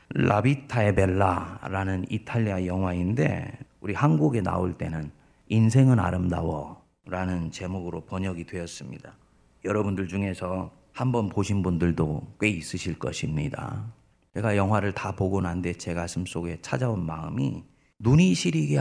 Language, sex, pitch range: Korean, male, 90-125 Hz